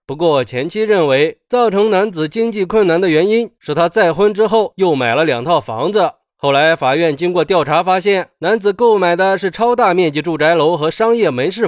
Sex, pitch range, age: male, 145-205 Hz, 30-49